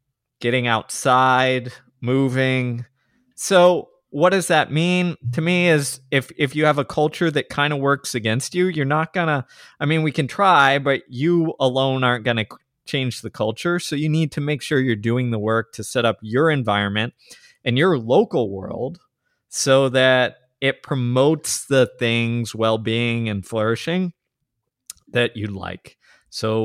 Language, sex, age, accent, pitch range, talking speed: English, male, 20-39, American, 110-140 Hz, 165 wpm